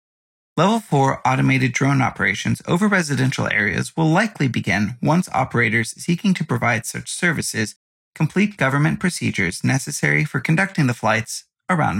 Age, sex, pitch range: 30-49, male, 125-170 Hz